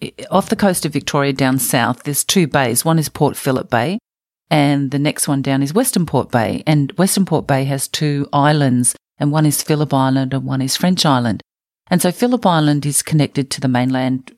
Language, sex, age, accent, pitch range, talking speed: English, female, 40-59, Australian, 135-155 Hz, 210 wpm